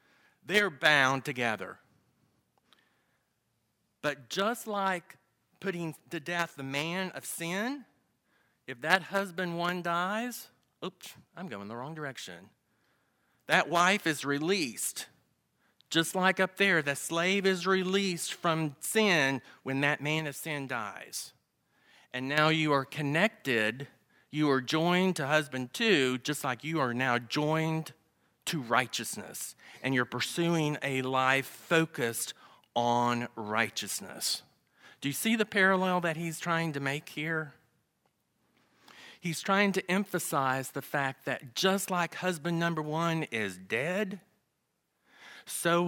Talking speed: 125 wpm